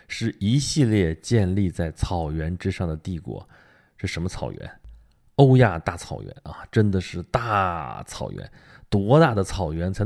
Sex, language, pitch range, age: male, Chinese, 85-110 Hz, 20-39